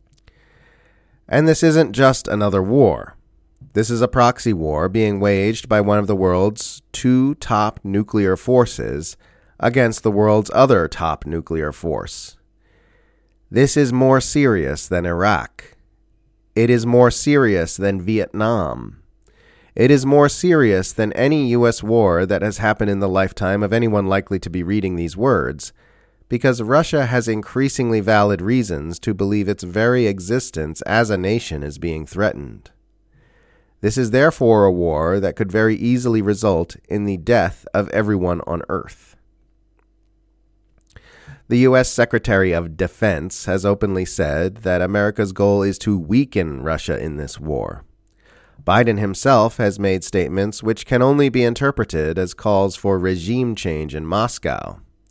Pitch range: 95-120 Hz